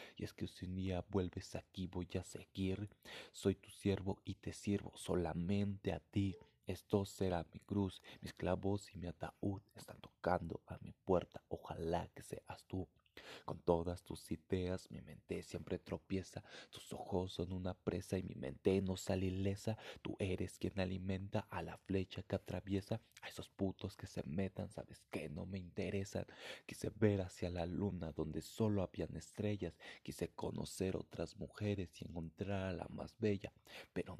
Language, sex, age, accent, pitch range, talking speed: Spanish, male, 30-49, Mexican, 90-100 Hz, 170 wpm